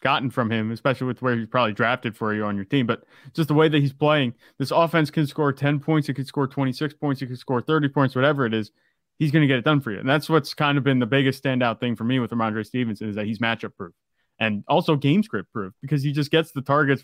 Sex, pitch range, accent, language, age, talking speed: male, 120-150 Hz, American, English, 20-39, 280 wpm